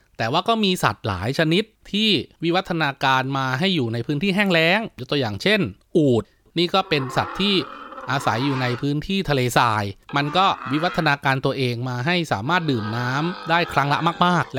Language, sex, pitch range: Thai, male, 125-170 Hz